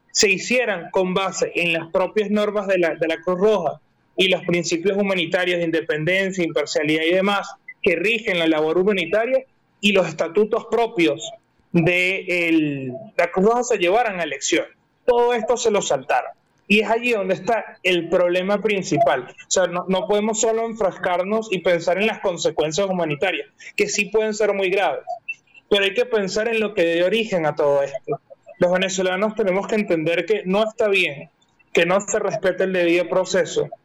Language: Spanish